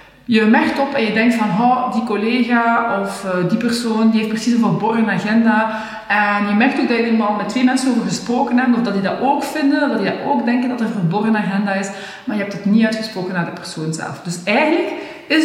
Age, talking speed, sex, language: 40-59, 240 wpm, female, Dutch